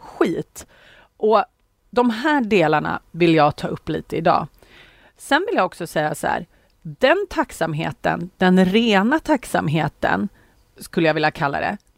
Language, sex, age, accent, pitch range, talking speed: Swedish, female, 30-49, native, 160-210 Hz, 135 wpm